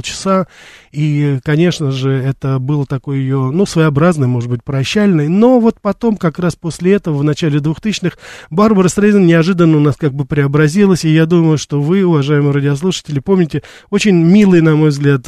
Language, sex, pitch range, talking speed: Russian, male, 135-170 Hz, 175 wpm